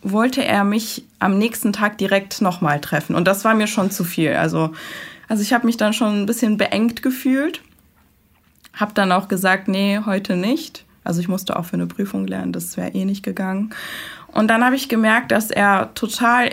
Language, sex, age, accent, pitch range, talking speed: German, female, 20-39, German, 180-230 Hz, 205 wpm